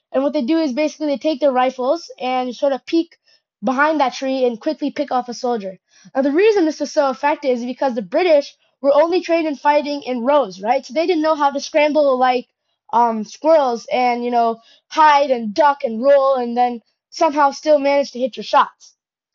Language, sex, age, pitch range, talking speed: English, female, 20-39, 255-310 Hz, 215 wpm